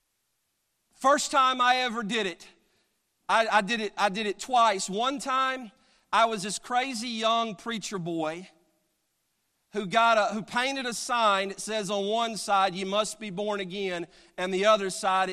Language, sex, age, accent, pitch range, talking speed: English, male, 40-59, American, 190-235 Hz, 170 wpm